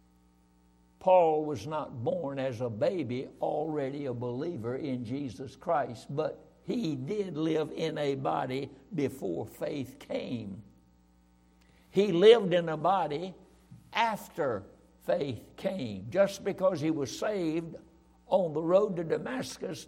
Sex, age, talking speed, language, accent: male, 60-79, 125 wpm, English, American